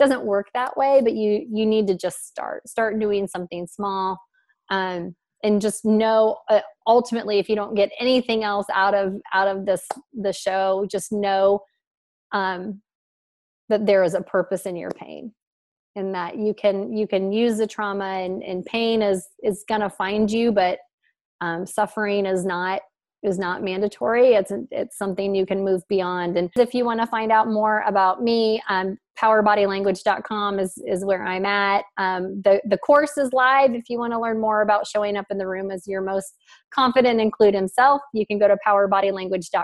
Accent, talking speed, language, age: American, 185 wpm, English, 30-49